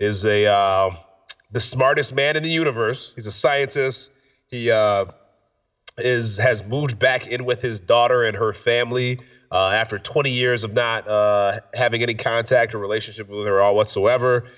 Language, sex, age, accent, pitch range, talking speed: English, male, 30-49, American, 105-125 Hz, 175 wpm